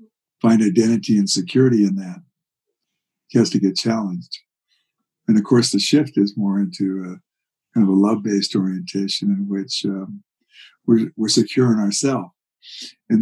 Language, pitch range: English, 100-135 Hz